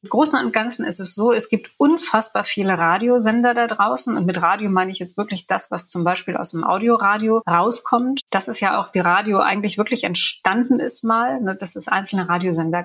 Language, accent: German, German